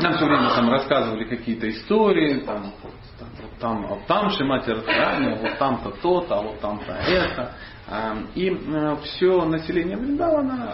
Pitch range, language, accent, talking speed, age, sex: 110-185 Hz, Russian, native, 135 wpm, 40-59, male